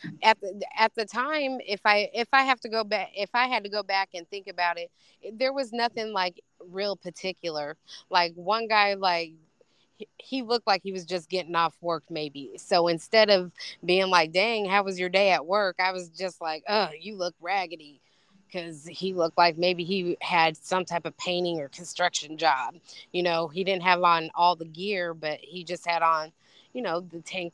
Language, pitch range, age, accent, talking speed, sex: English, 165-195 Hz, 20-39, American, 205 wpm, female